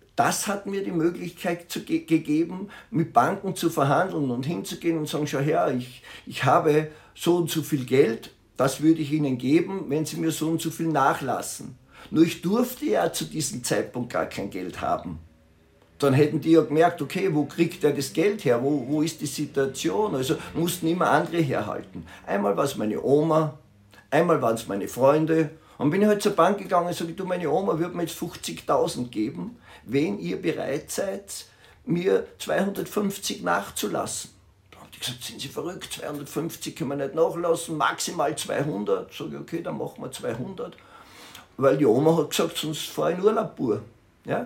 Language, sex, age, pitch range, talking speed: German, male, 50-69, 140-175 Hz, 185 wpm